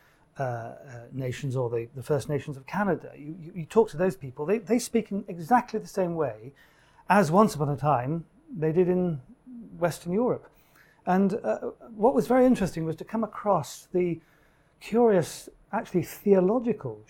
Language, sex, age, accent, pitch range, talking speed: English, male, 40-59, British, 140-180 Hz, 170 wpm